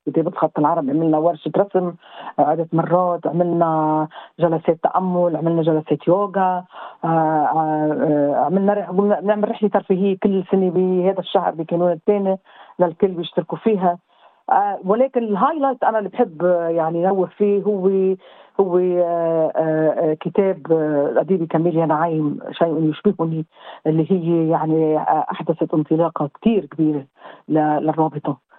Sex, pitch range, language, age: female, 160-195 Hz, Arabic, 40-59